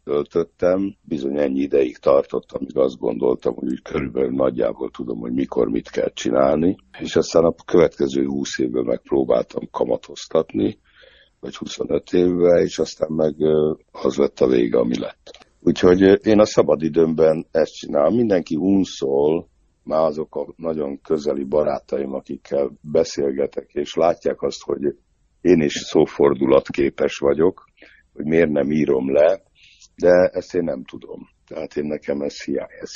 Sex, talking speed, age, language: male, 140 wpm, 60-79, Hungarian